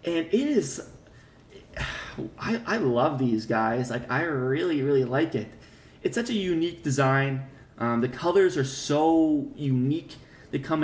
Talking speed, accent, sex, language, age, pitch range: 150 wpm, American, male, English, 20-39, 120-145 Hz